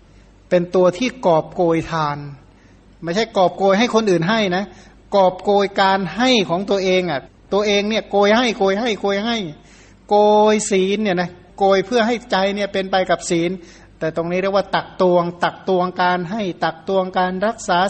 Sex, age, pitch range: male, 60-79, 175-200 Hz